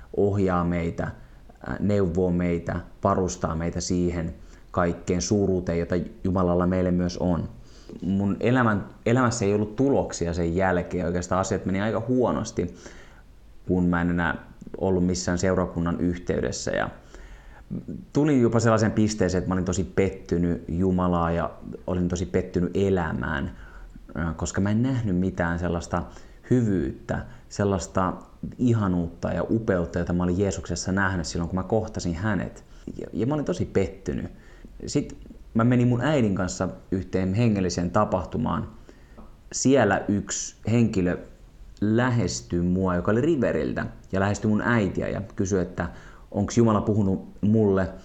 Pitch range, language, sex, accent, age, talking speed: 90-100 Hz, Finnish, male, native, 30-49, 130 wpm